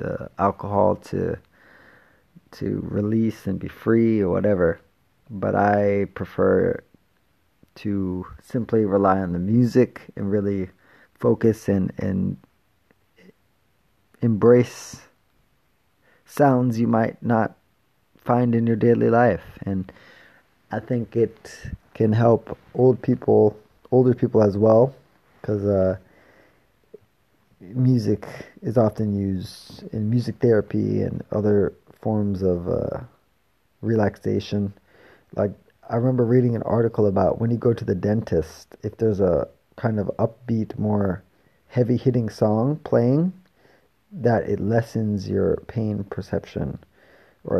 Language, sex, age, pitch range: English, male, 20-39, 100-120 Hz